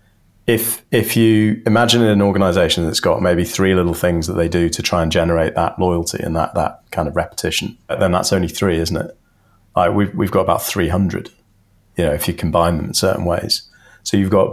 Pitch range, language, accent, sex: 85-110 Hz, English, British, male